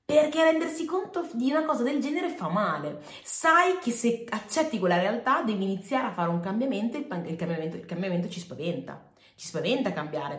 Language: Italian